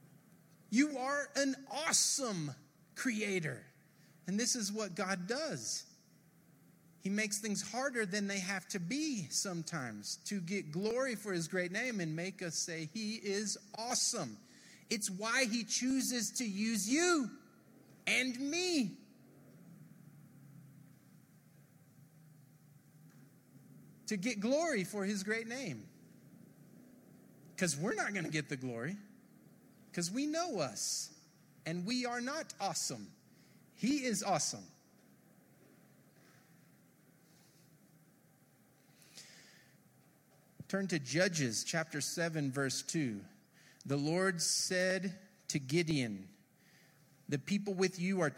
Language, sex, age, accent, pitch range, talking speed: English, male, 30-49, American, 145-210 Hz, 110 wpm